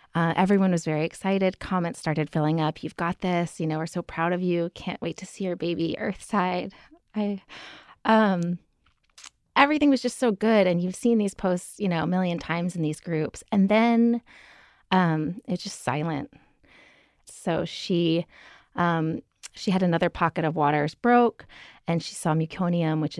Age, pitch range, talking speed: 30-49, 155-190 Hz, 175 wpm